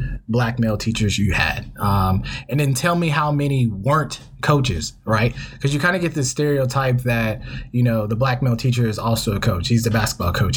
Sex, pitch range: male, 110-135 Hz